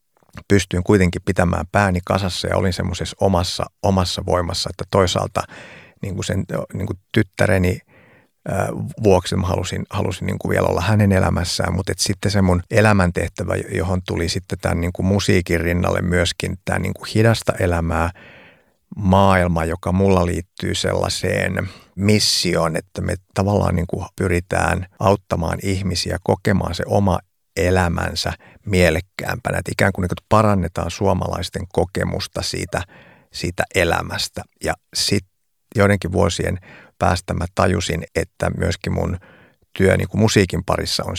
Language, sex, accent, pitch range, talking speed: Finnish, male, native, 85-100 Hz, 115 wpm